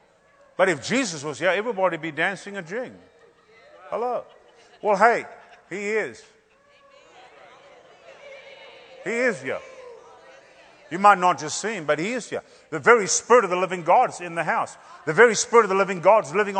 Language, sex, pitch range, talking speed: English, male, 190-225 Hz, 165 wpm